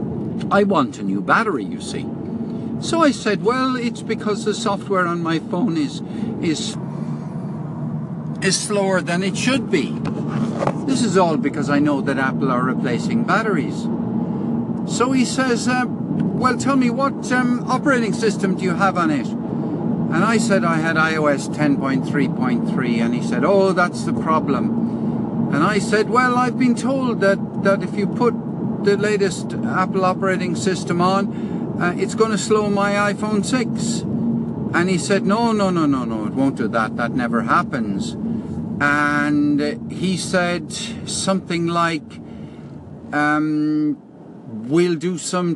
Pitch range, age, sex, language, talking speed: 170-220 Hz, 60-79, male, English, 155 wpm